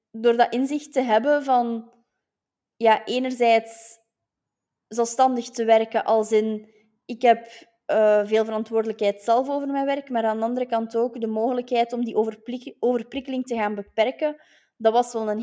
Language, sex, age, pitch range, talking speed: Dutch, female, 20-39, 210-240 Hz, 150 wpm